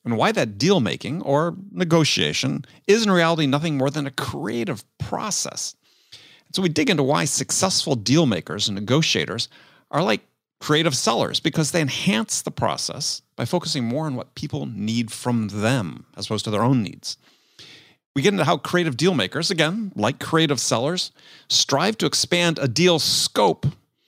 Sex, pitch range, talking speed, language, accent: male, 120-175 Hz, 160 wpm, English, American